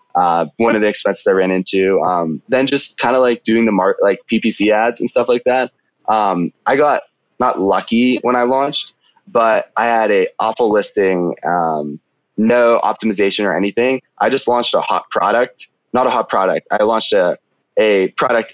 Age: 20-39